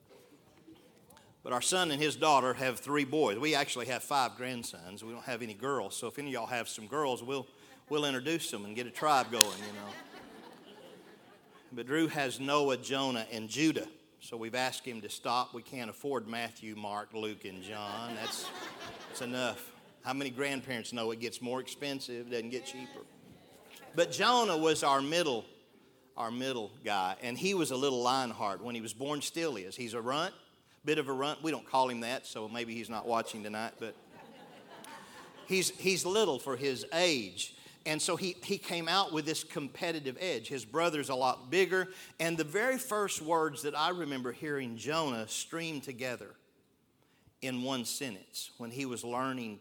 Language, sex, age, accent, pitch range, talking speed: English, male, 50-69, American, 120-160 Hz, 185 wpm